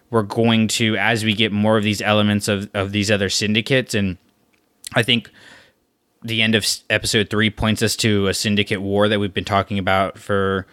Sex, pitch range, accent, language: male, 100-110 Hz, American, English